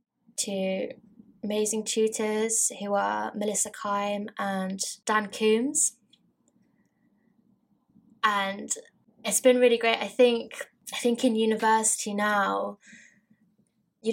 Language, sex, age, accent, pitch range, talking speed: English, female, 10-29, British, 195-225 Hz, 100 wpm